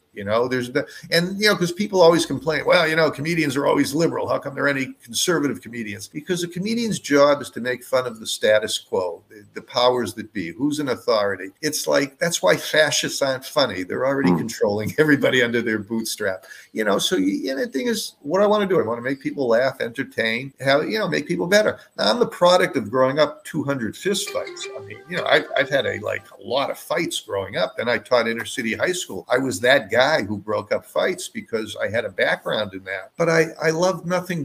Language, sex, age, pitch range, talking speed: English, male, 50-69, 120-165 Hz, 240 wpm